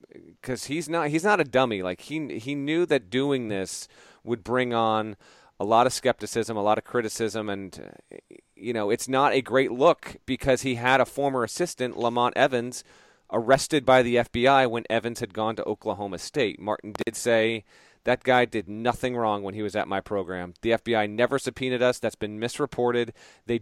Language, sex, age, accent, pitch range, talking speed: English, male, 40-59, American, 95-125 Hz, 190 wpm